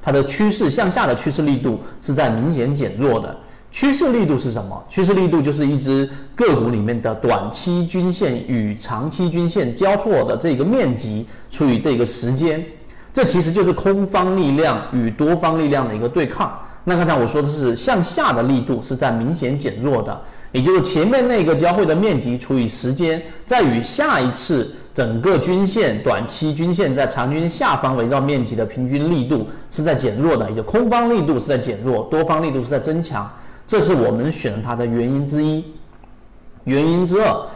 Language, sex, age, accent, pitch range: Chinese, male, 40-59, native, 120-180 Hz